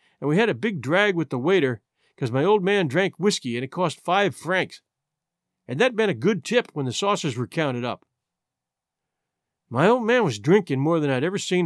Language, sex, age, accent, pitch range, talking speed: English, male, 50-69, American, 145-210 Hz, 215 wpm